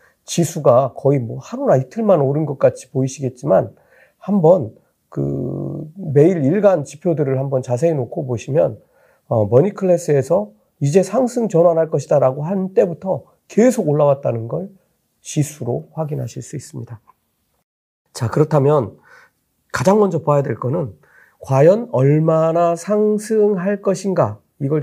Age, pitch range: 40-59, 125-180 Hz